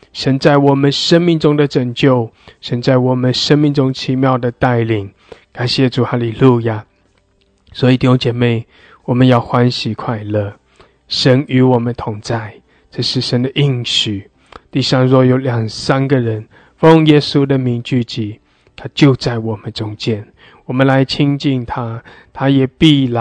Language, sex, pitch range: English, male, 120-140 Hz